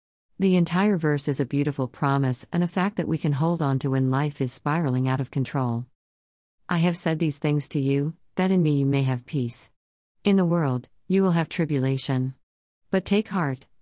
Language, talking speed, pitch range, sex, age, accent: English, 205 wpm, 130-175 Hz, female, 50-69, American